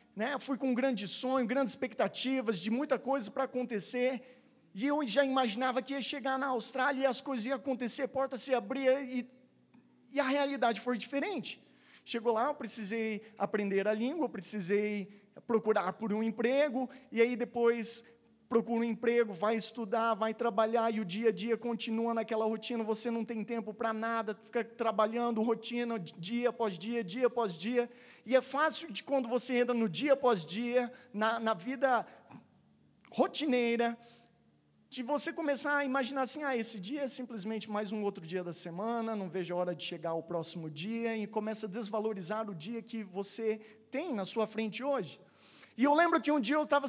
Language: Portuguese